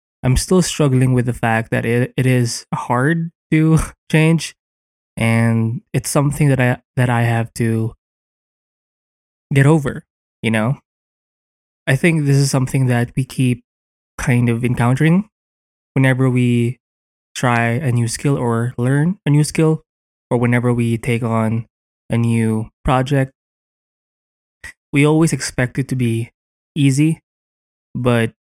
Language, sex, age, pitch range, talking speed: English, male, 20-39, 115-135 Hz, 135 wpm